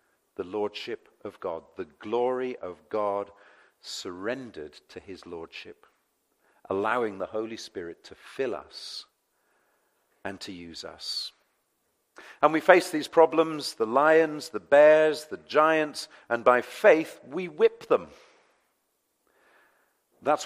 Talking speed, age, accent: 120 wpm, 50-69, British